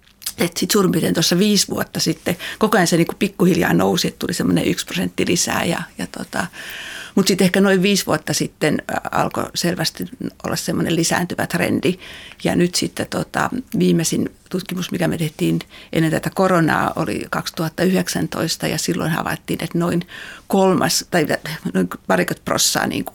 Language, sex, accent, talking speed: Finnish, female, native, 145 wpm